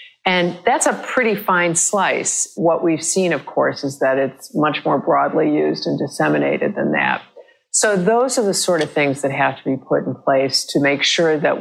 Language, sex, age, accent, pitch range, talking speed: English, female, 50-69, American, 140-175 Hz, 205 wpm